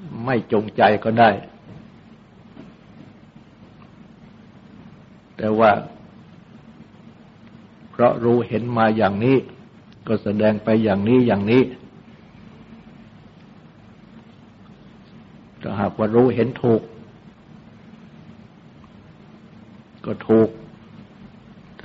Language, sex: Thai, male